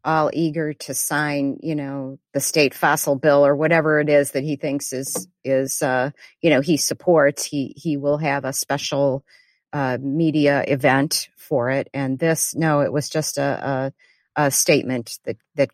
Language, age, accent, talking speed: English, 40-59, American, 180 wpm